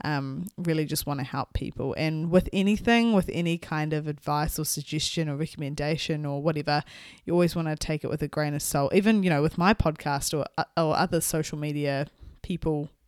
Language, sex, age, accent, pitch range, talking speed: English, female, 20-39, Australian, 150-190 Hz, 200 wpm